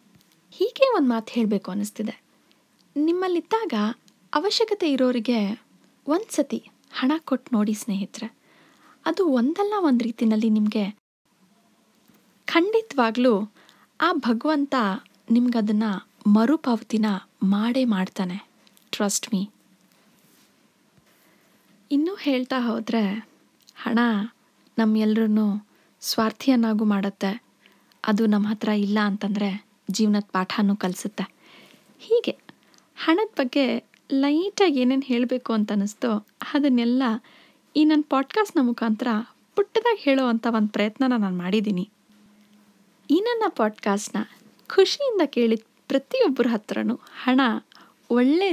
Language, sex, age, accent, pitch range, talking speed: Kannada, female, 20-39, native, 210-280 Hz, 90 wpm